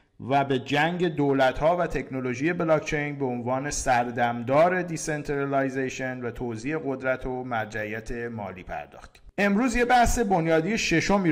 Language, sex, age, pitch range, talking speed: Persian, male, 50-69, 120-155 Hz, 125 wpm